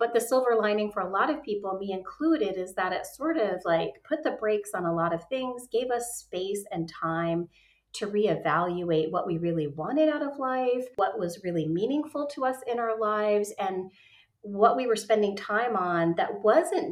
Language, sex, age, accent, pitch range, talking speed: English, female, 30-49, American, 170-235 Hz, 200 wpm